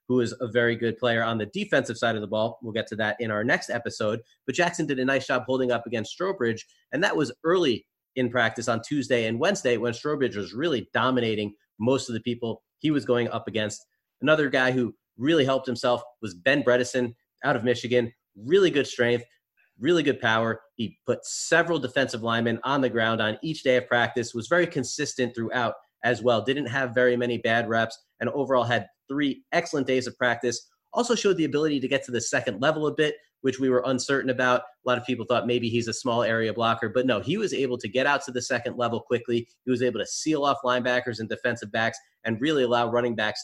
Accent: American